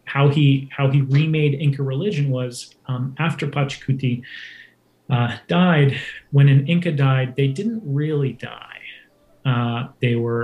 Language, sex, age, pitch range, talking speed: English, male, 30-49, 125-140 Hz, 140 wpm